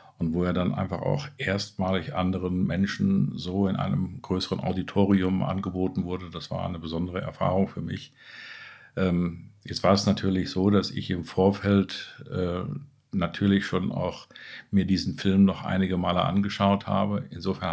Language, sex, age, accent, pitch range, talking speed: German, male, 50-69, German, 85-100 Hz, 150 wpm